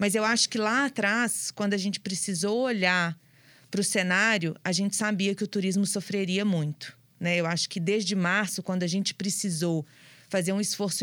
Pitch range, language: 165-200 Hz, Portuguese